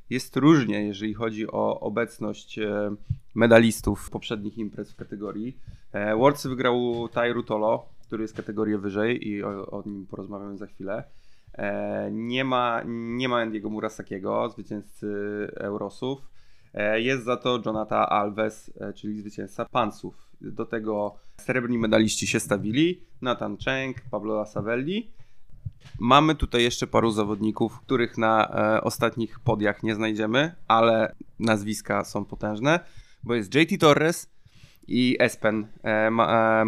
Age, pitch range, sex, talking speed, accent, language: 20-39, 105-125 Hz, male, 125 wpm, native, Polish